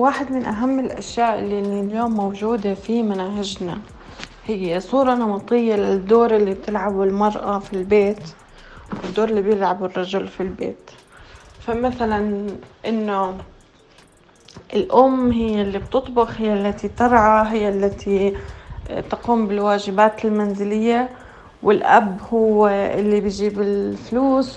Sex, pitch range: female, 205-235 Hz